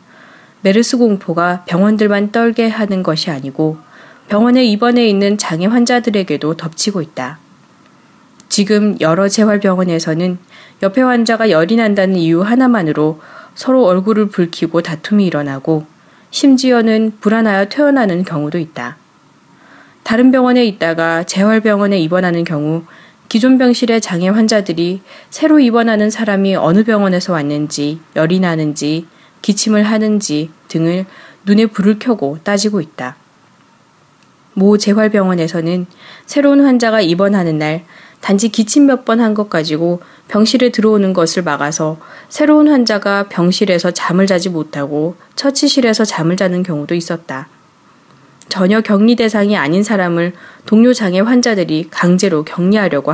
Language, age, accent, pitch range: Korean, 20-39, native, 170-225 Hz